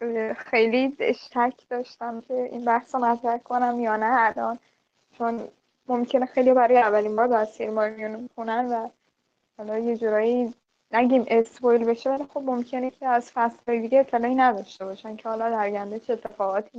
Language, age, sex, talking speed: Persian, 10-29, female, 155 wpm